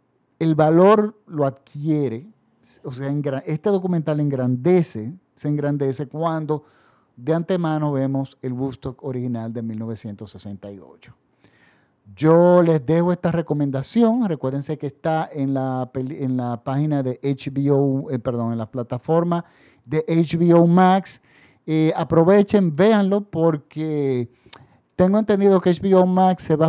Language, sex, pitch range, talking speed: Spanish, male, 140-175 Hz, 120 wpm